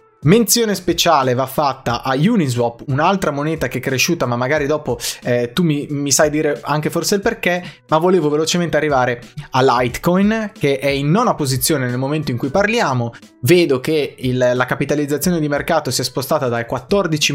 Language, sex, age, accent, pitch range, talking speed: Italian, male, 20-39, native, 125-170 Hz, 175 wpm